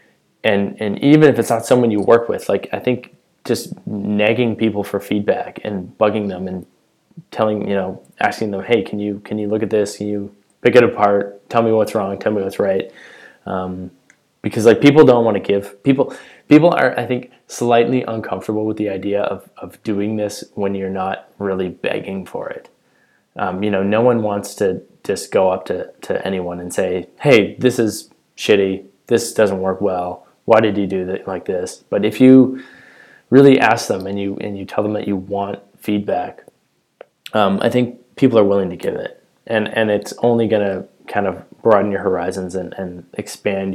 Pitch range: 95-110 Hz